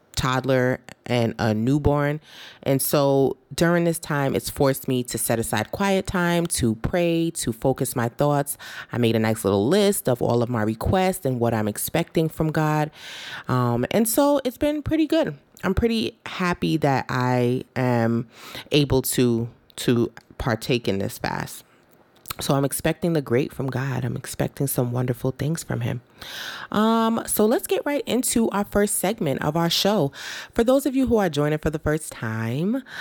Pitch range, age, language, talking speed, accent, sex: 120-165 Hz, 30-49, English, 175 wpm, American, female